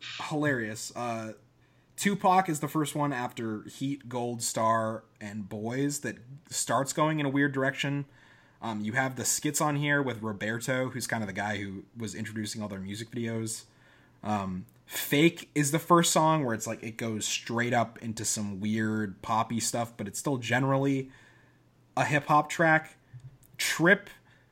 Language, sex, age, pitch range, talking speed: English, male, 20-39, 110-145 Hz, 165 wpm